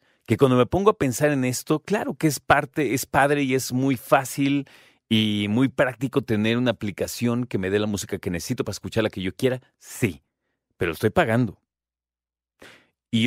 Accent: Mexican